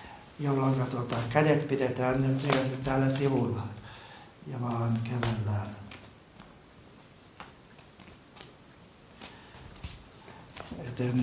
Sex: male